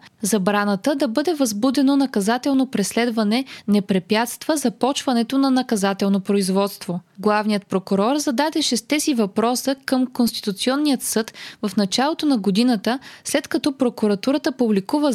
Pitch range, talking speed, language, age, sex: 200-260 Hz, 110 wpm, Bulgarian, 20-39, female